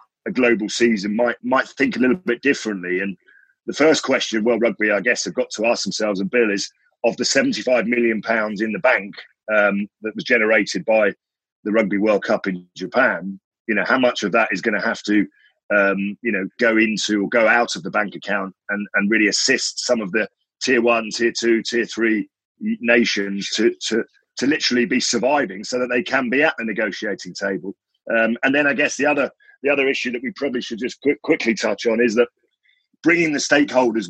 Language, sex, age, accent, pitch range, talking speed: English, male, 40-59, British, 105-125 Hz, 215 wpm